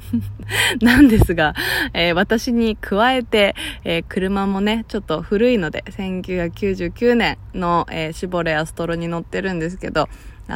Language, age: Japanese, 20-39